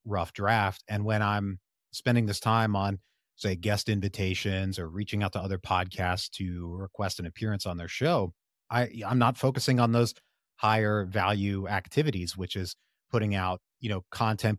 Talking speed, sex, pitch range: 170 wpm, male, 90-110 Hz